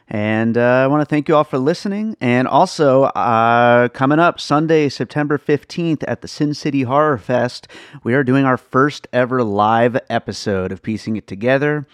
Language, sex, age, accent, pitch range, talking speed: English, male, 30-49, American, 105-130 Hz, 180 wpm